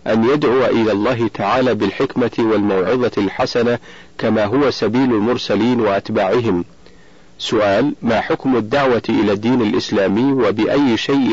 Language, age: Arabic, 40-59